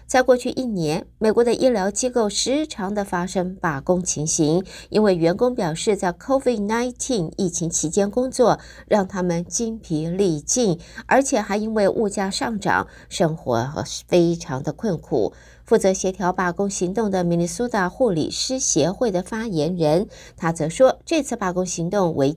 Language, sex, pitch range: Chinese, female, 170-225 Hz